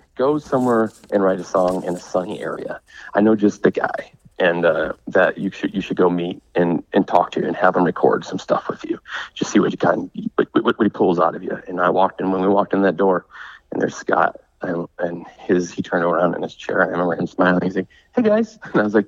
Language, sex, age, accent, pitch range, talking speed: English, male, 30-49, American, 95-120 Hz, 260 wpm